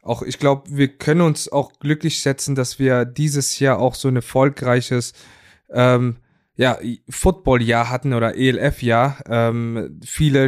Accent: German